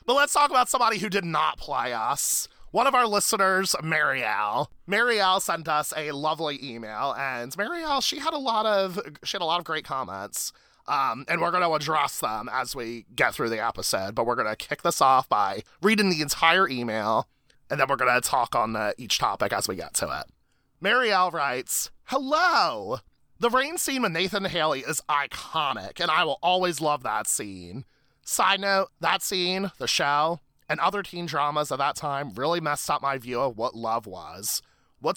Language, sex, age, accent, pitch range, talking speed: English, male, 30-49, American, 130-195 Hz, 200 wpm